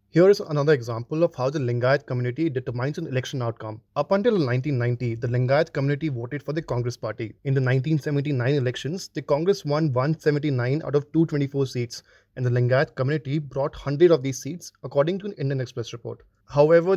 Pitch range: 130-160 Hz